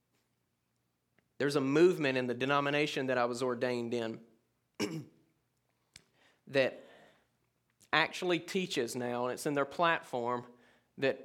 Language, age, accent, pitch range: English, 30-49, American, 135-165 Hz